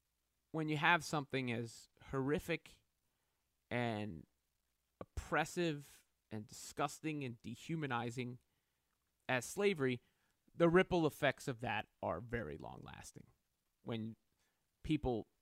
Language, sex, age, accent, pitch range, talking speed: English, male, 30-49, American, 110-150 Hz, 95 wpm